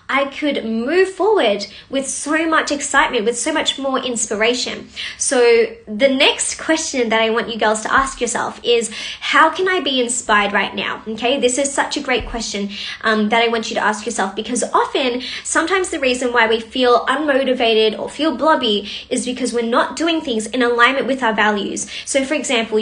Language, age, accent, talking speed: English, 20-39, Australian, 195 wpm